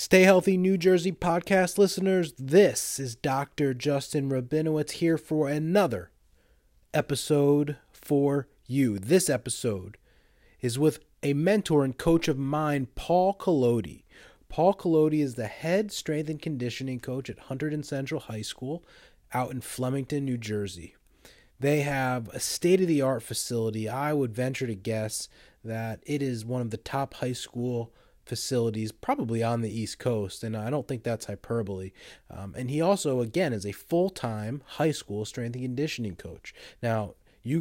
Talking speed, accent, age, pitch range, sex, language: 155 wpm, American, 30-49, 115-145 Hz, male, English